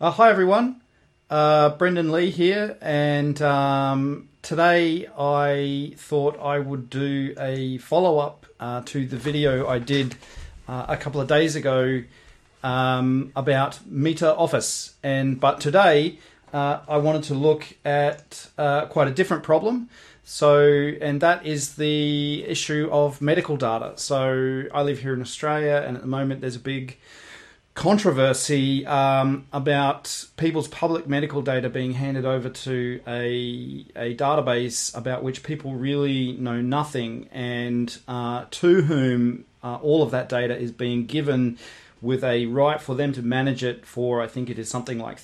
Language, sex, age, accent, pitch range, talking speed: English, male, 40-59, Australian, 125-150 Hz, 155 wpm